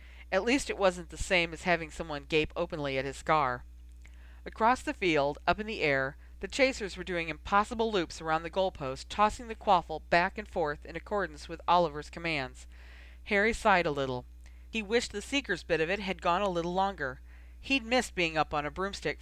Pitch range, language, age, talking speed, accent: 140-215 Hz, English, 40-59, 200 wpm, American